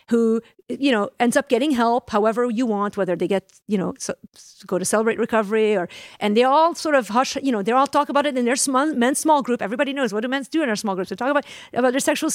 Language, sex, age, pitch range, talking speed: English, female, 50-69, 215-275 Hz, 275 wpm